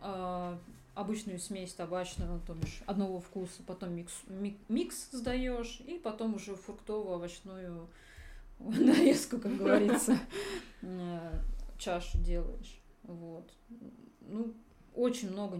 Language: Russian